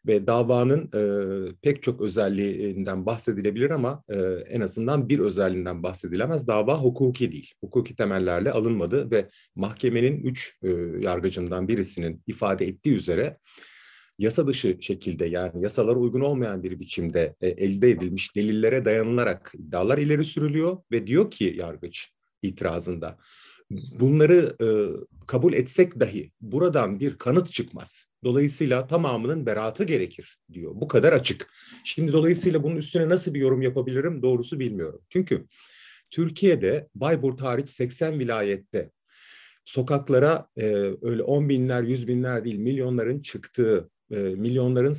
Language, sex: Turkish, male